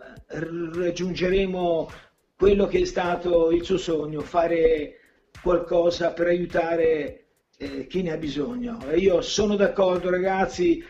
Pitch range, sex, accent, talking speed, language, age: 170-190 Hz, male, native, 115 wpm, Italian, 50-69